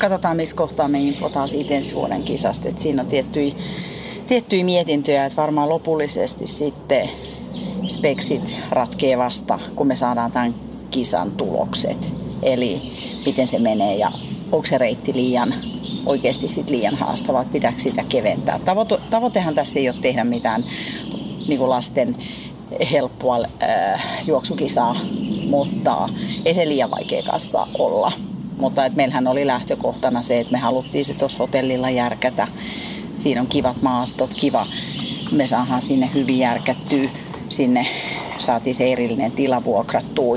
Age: 40-59